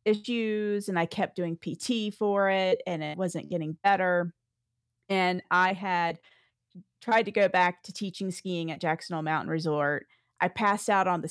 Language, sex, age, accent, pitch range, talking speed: English, female, 40-59, American, 165-205 Hz, 170 wpm